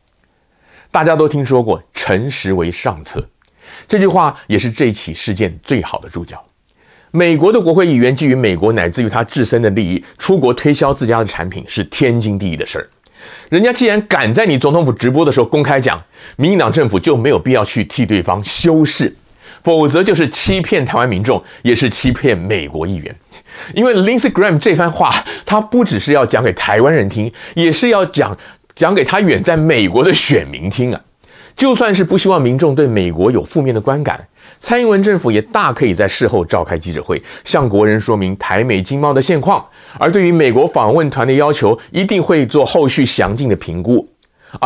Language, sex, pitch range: Chinese, male, 105-170 Hz